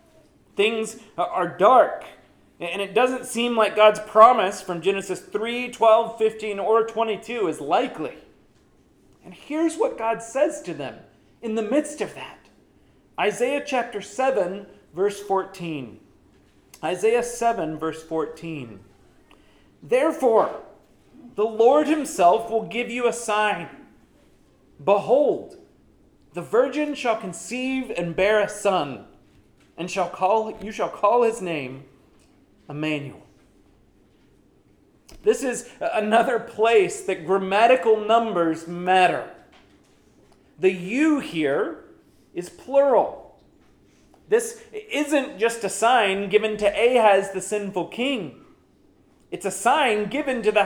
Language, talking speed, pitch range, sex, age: English, 115 wpm, 190-245 Hz, male, 40-59